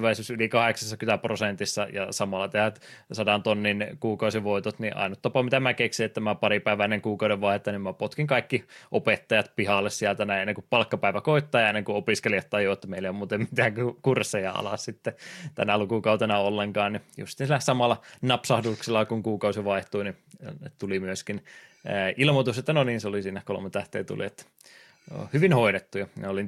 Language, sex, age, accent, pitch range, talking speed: Finnish, male, 20-39, native, 100-115 Hz, 170 wpm